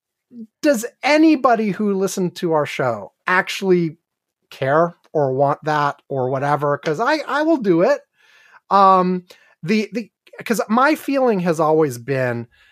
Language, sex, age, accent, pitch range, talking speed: English, male, 30-49, American, 140-195 Hz, 135 wpm